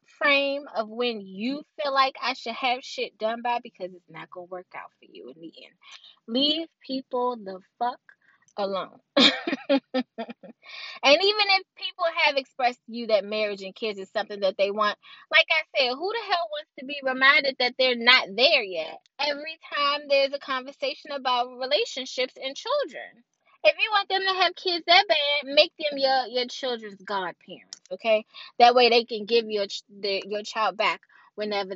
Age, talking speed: 20-39, 180 wpm